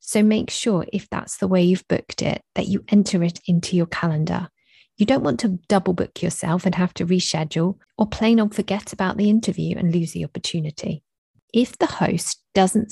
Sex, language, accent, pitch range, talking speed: female, English, British, 170-215 Hz, 200 wpm